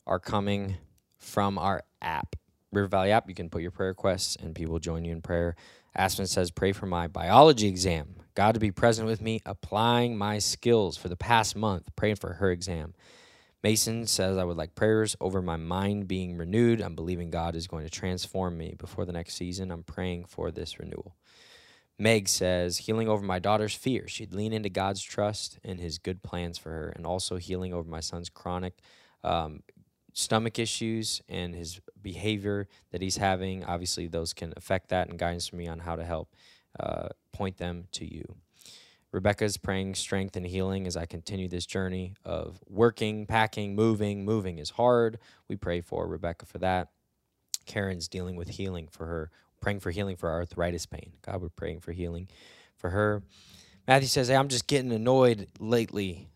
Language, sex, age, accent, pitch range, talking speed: English, male, 20-39, American, 85-105 Hz, 185 wpm